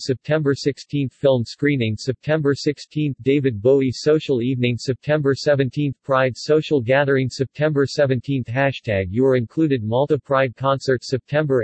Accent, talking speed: American, 150 wpm